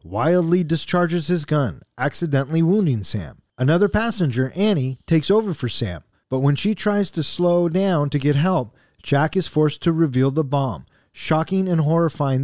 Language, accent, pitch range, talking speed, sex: English, American, 130-175 Hz, 165 wpm, male